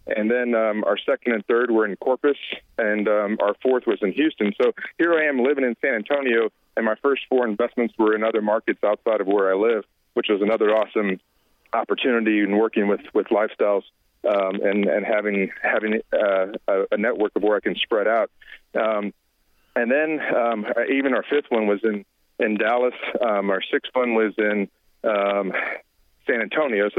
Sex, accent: male, American